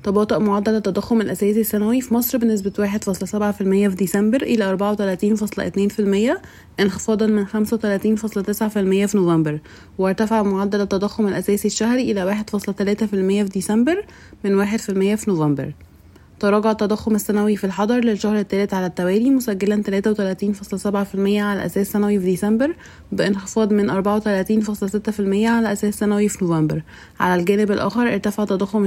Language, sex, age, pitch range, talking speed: Arabic, female, 20-39, 195-215 Hz, 160 wpm